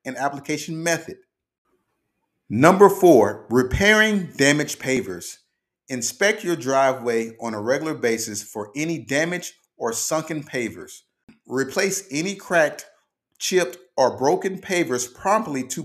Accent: American